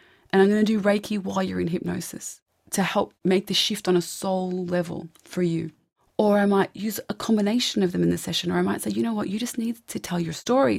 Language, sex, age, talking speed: English, female, 30-49, 255 wpm